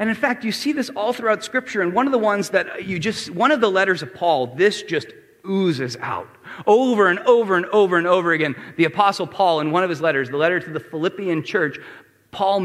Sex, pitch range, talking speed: male, 170-250 Hz, 235 wpm